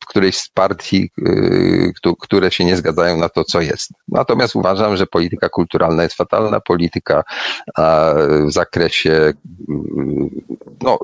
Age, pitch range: 40-59, 95-125 Hz